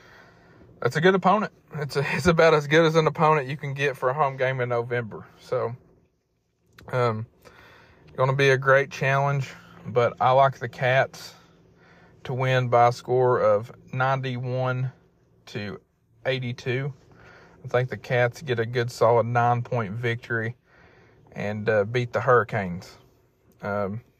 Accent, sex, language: American, male, English